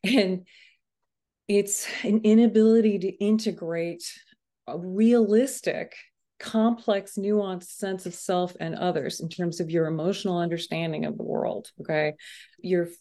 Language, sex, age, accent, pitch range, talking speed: English, female, 30-49, American, 165-195 Hz, 120 wpm